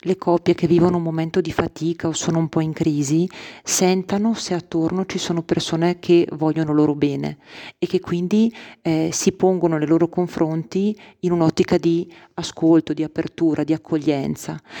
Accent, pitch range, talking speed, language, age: native, 155-175 Hz, 165 wpm, Italian, 40-59